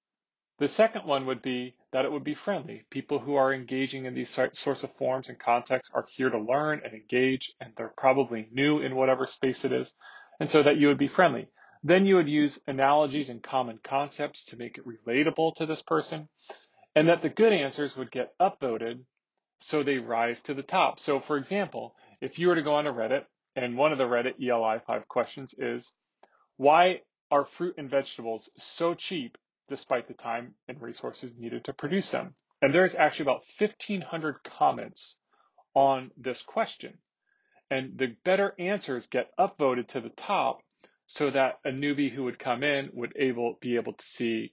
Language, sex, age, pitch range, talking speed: English, male, 30-49, 125-150 Hz, 190 wpm